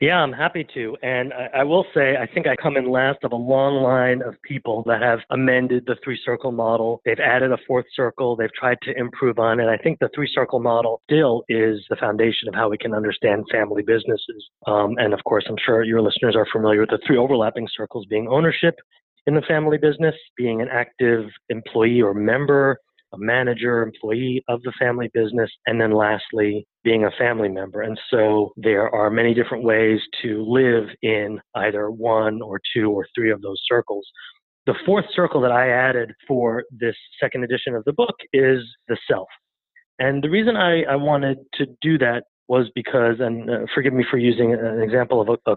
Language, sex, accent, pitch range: English, male, American, 115-135 Hz